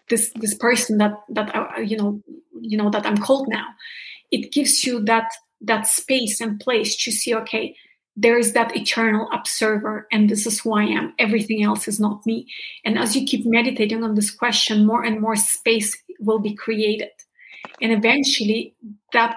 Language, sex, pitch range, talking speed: English, female, 215-230 Hz, 165 wpm